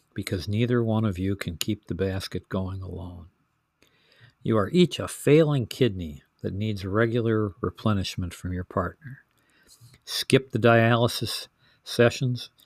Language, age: English, 50-69